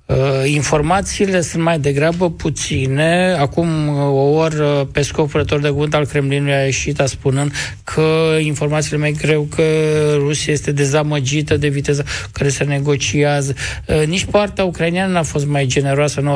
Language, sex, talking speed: Romanian, male, 145 wpm